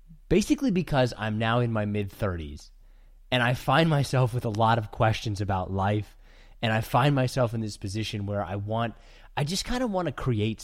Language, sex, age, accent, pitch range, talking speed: English, male, 20-39, American, 105-140 Hz, 205 wpm